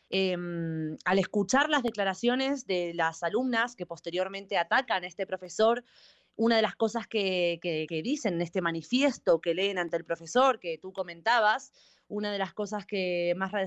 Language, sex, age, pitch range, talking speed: Spanish, female, 20-39, 175-240 Hz, 165 wpm